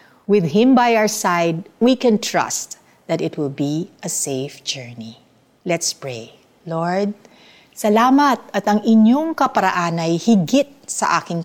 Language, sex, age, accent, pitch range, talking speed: Filipino, female, 50-69, native, 155-225 Hz, 140 wpm